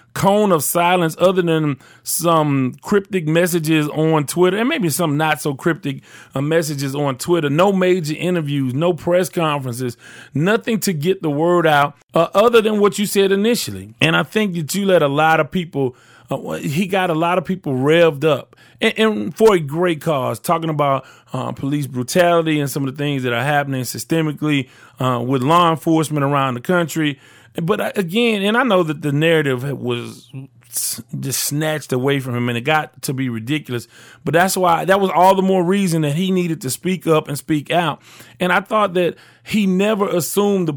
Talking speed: 190 wpm